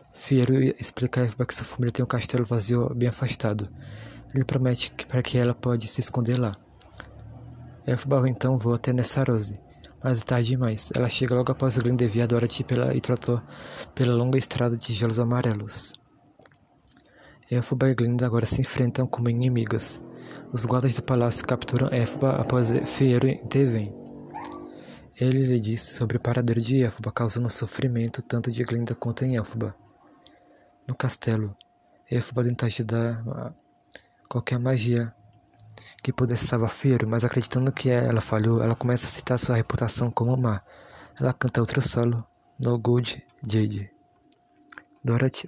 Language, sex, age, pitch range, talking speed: Portuguese, male, 20-39, 115-125 Hz, 150 wpm